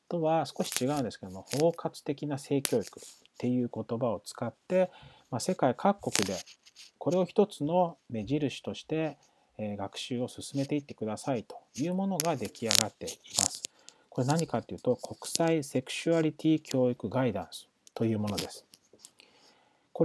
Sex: male